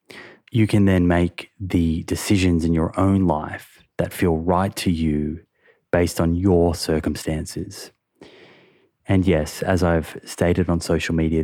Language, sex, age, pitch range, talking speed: English, male, 20-39, 80-90 Hz, 140 wpm